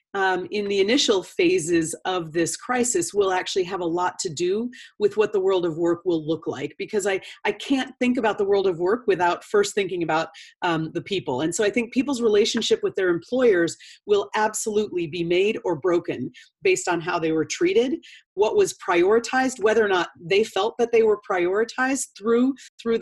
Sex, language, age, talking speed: female, English, 40-59, 200 wpm